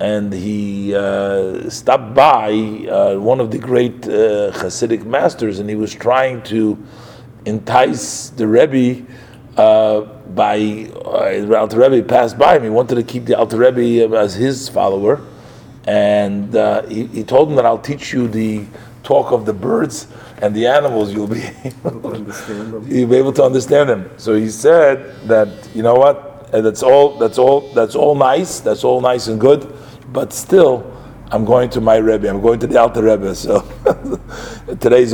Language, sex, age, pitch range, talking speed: English, male, 40-59, 105-130 Hz, 170 wpm